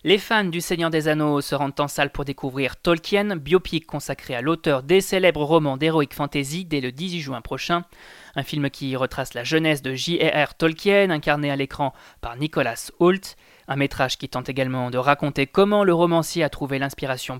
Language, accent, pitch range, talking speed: French, French, 140-180 Hz, 190 wpm